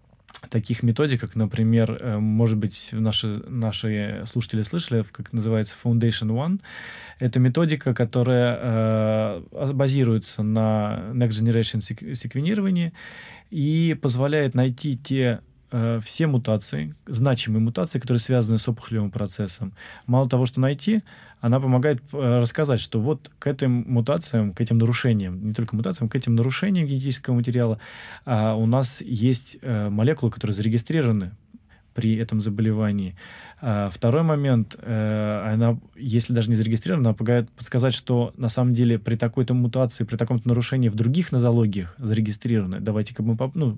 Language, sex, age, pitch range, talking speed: Russian, male, 20-39, 110-125 Hz, 130 wpm